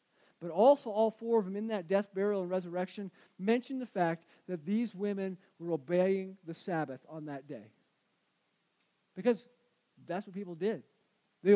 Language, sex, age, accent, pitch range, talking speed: English, male, 50-69, American, 185-235 Hz, 160 wpm